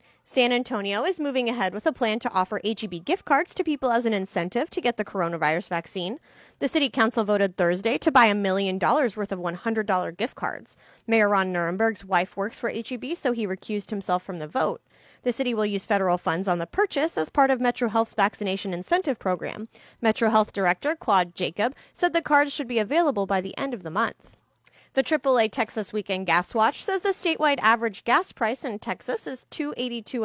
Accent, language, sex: American, English, female